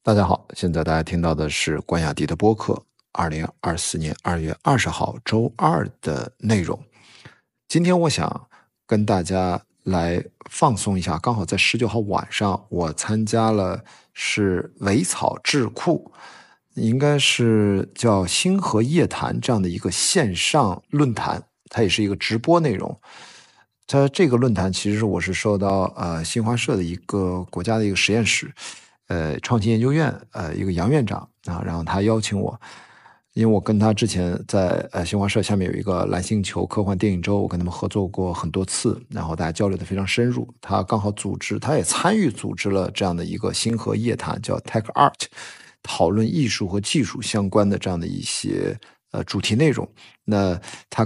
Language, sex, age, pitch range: Chinese, male, 50-69, 90-115 Hz